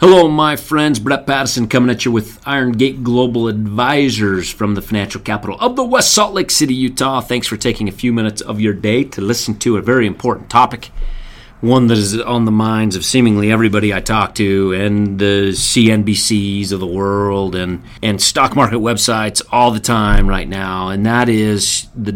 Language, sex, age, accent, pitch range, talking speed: English, male, 30-49, American, 105-125 Hz, 195 wpm